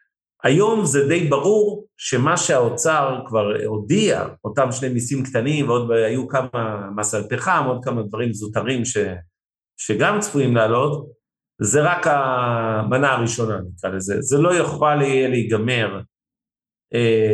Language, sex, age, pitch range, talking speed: Hebrew, male, 50-69, 105-140 Hz, 120 wpm